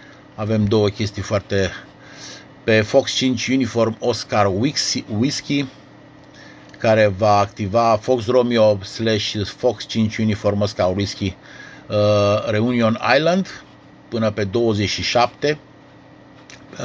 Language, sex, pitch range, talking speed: Romanian, male, 105-130 Hz, 95 wpm